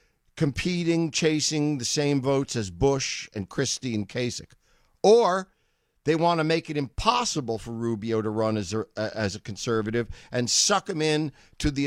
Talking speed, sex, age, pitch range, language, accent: 165 wpm, male, 50-69, 120-160 Hz, English, American